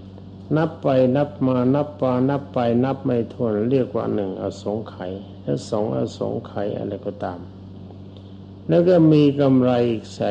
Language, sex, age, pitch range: Thai, male, 60-79, 95-135 Hz